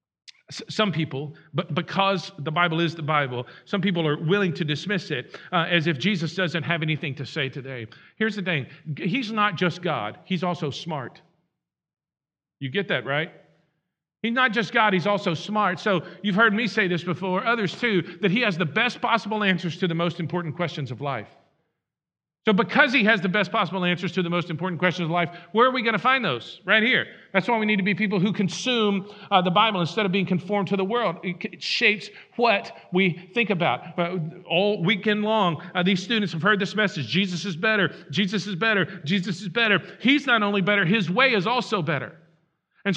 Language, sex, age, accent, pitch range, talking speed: English, male, 50-69, American, 175-225 Hz, 210 wpm